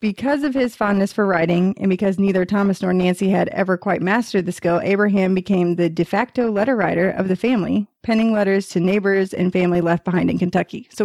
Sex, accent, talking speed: female, American, 210 wpm